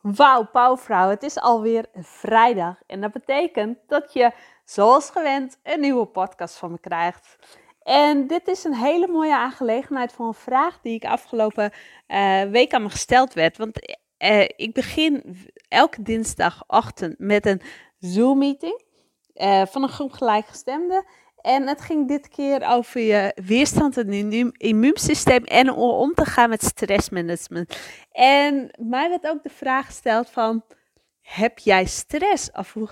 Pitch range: 220-290 Hz